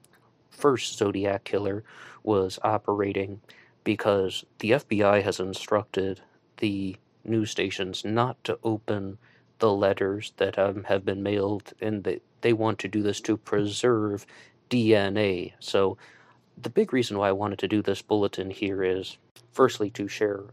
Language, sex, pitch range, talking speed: English, male, 95-110 Hz, 140 wpm